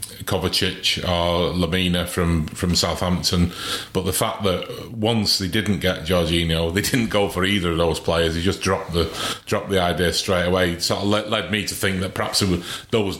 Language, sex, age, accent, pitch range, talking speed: English, male, 30-49, British, 90-100 Hz, 200 wpm